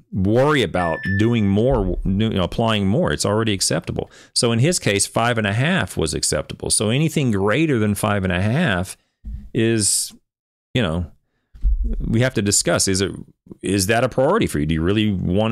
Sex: male